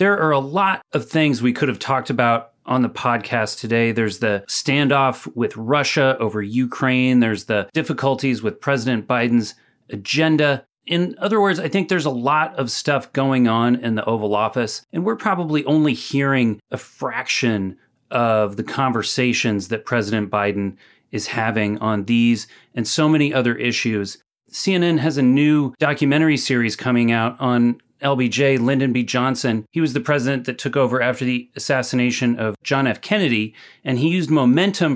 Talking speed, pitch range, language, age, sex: 170 wpm, 120-150 Hz, English, 30-49, male